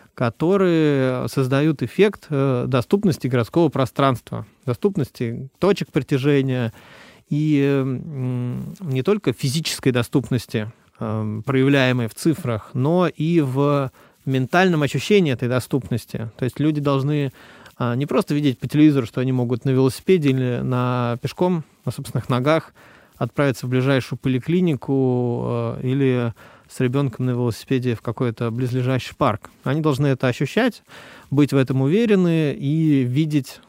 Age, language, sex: 30-49, Russian, male